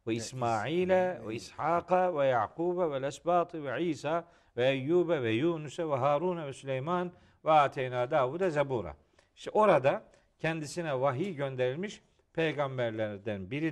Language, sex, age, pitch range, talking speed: Turkish, male, 50-69, 140-180 Hz, 110 wpm